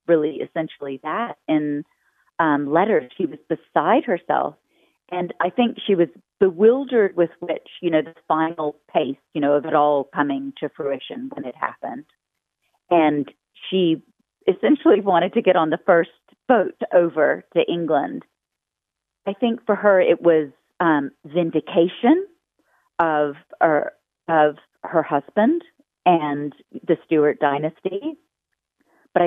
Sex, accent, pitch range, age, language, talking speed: female, American, 150-190 Hz, 40-59, English, 135 wpm